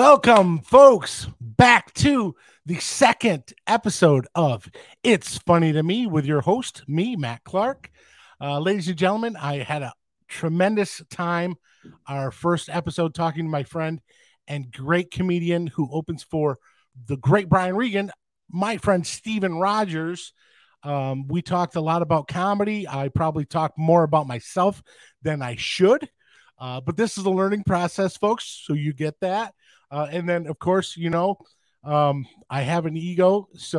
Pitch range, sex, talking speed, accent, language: 130-180 Hz, male, 160 wpm, American, English